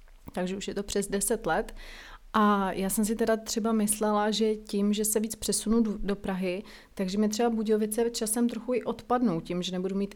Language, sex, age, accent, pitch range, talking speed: Czech, female, 30-49, native, 200-230 Hz, 200 wpm